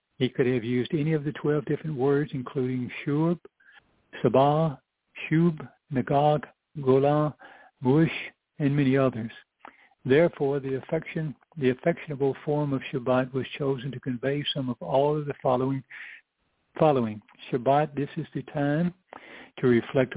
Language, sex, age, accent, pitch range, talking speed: English, male, 60-79, American, 125-150 Hz, 135 wpm